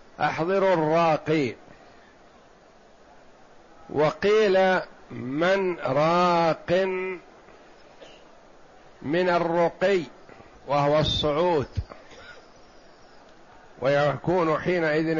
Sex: male